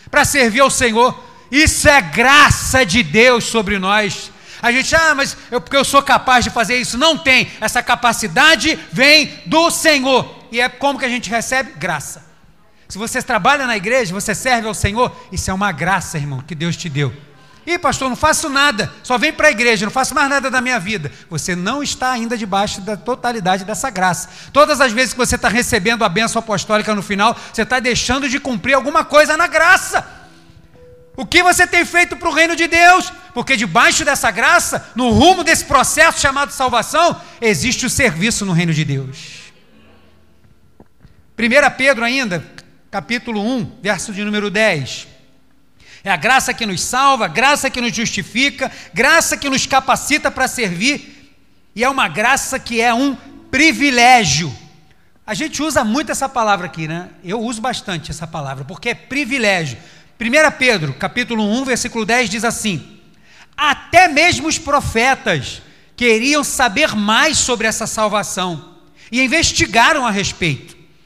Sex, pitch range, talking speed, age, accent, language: male, 205-275 Hz, 170 wpm, 40-59, Brazilian, Portuguese